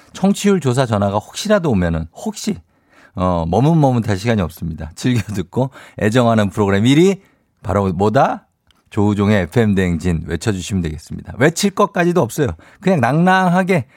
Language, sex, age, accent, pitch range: Korean, male, 50-69, native, 100-145 Hz